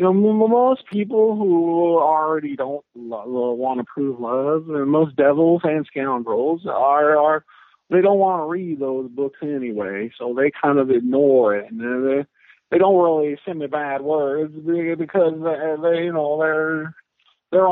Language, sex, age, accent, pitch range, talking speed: English, male, 50-69, American, 140-185 Hz, 170 wpm